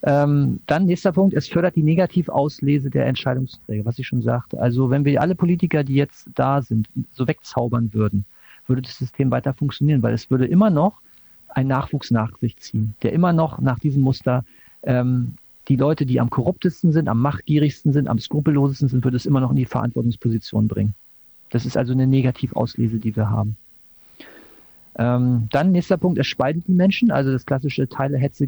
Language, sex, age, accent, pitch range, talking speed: German, male, 40-59, German, 115-145 Hz, 185 wpm